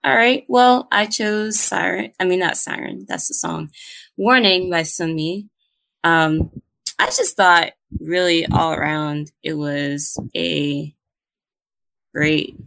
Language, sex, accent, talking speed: English, female, American, 130 wpm